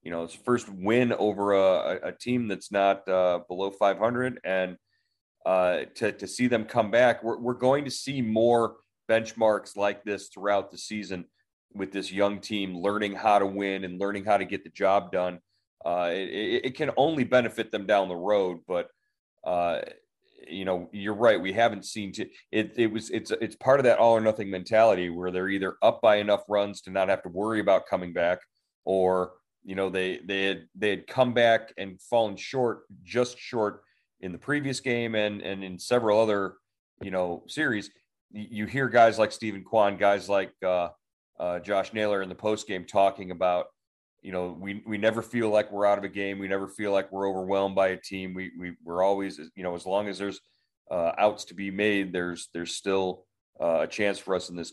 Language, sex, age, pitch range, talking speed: English, male, 30-49, 95-110 Hz, 205 wpm